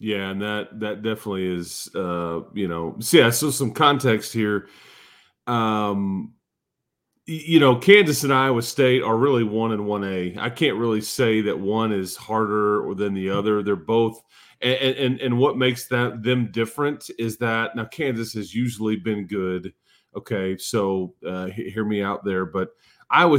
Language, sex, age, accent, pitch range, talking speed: English, male, 40-59, American, 100-120 Hz, 165 wpm